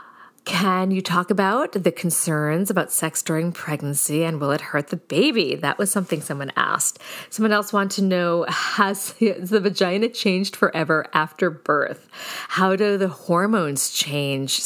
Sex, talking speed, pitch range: female, 155 wpm, 150-200 Hz